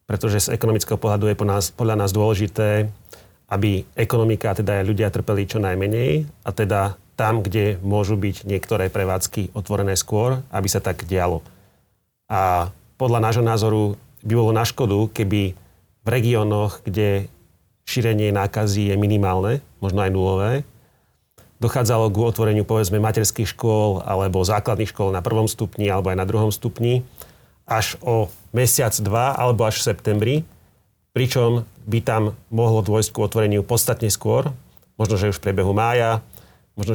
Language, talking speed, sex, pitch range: Slovak, 145 wpm, male, 105-120 Hz